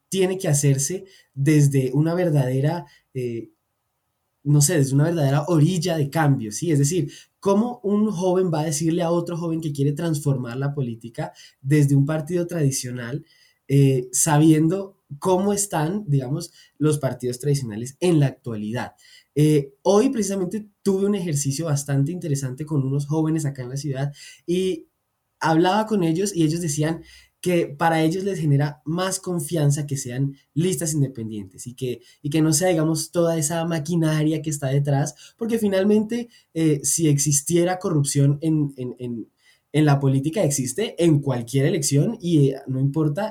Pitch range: 140-175 Hz